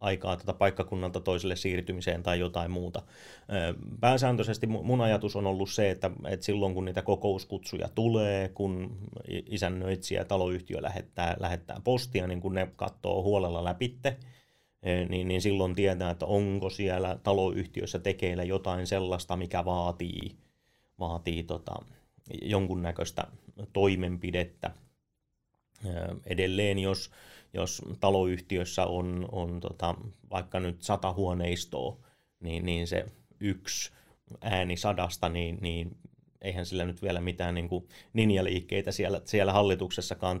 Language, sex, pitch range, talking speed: Finnish, male, 90-100 Hz, 115 wpm